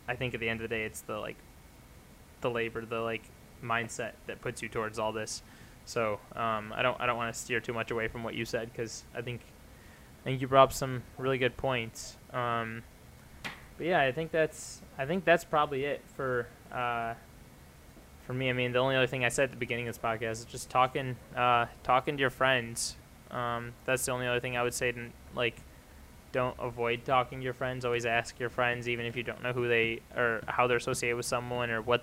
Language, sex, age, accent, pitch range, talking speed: English, male, 20-39, American, 115-130 Hz, 230 wpm